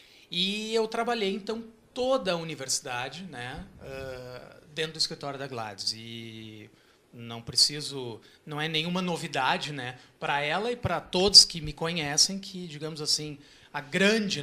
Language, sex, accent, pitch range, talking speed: Portuguese, male, Brazilian, 135-195 Hz, 140 wpm